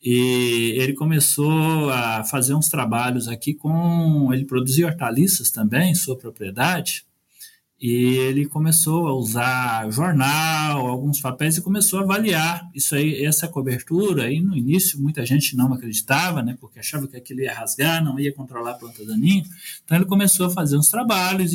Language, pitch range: Portuguese, 135-180 Hz